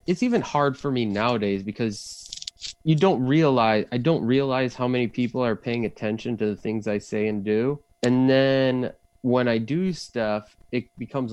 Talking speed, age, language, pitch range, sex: 180 wpm, 20-39, English, 105-135 Hz, male